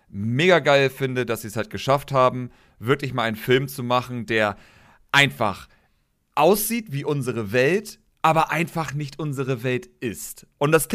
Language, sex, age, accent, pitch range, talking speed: German, male, 40-59, German, 115-155 Hz, 165 wpm